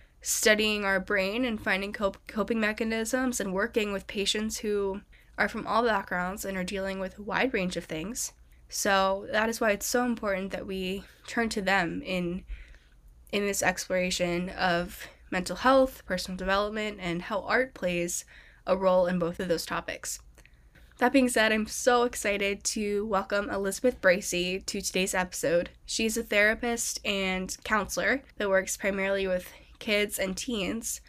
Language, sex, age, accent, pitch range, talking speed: English, female, 10-29, American, 185-220 Hz, 160 wpm